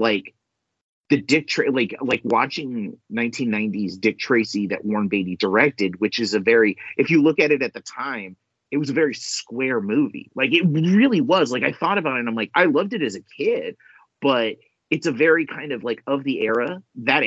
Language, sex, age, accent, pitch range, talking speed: English, male, 30-49, American, 115-175 Hz, 210 wpm